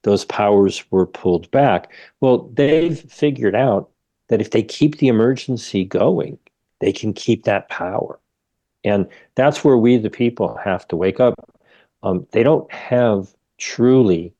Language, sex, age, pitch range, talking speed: English, male, 50-69, 100-125 Hz, 150 wpm